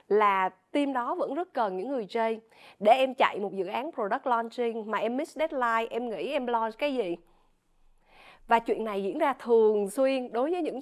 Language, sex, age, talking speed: Vietnamese, female, 20-39, 205 wpm